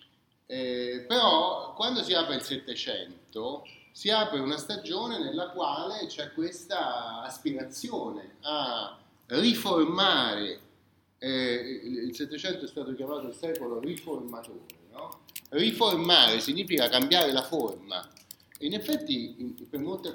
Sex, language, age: male, Italian, 30-49